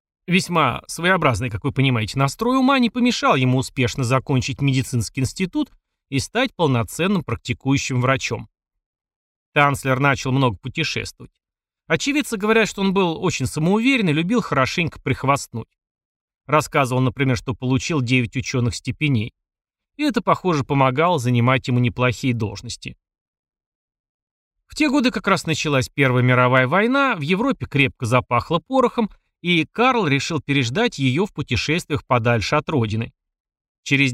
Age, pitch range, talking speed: 30-49, 125-180 Hz, 130 wpm